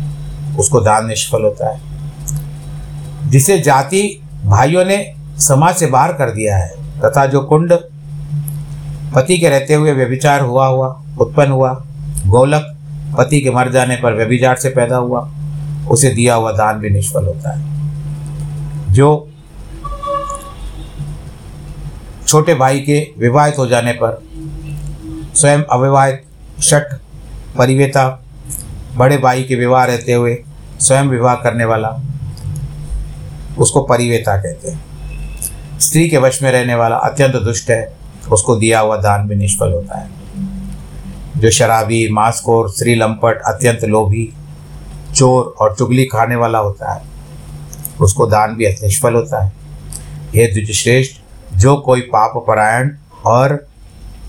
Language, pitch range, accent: Hindi, 115-145 Hz, native